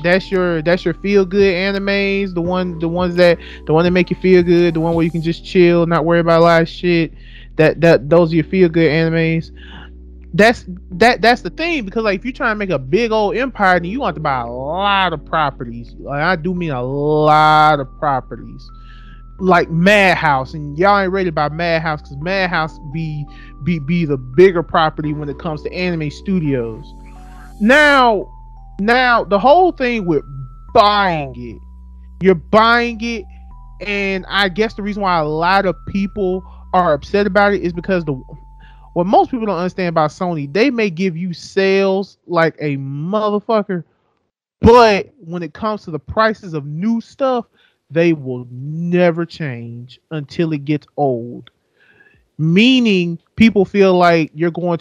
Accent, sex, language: American, male, English